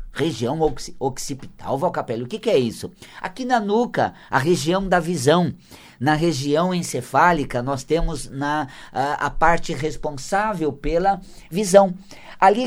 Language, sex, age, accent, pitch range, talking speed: Portuguese, male, 50-69, Brazilian, 145-195 Hz, 125 wpm